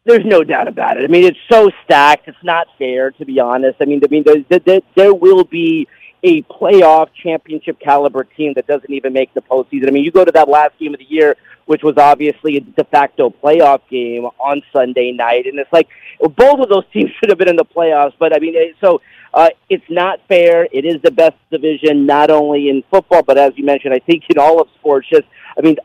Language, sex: English, male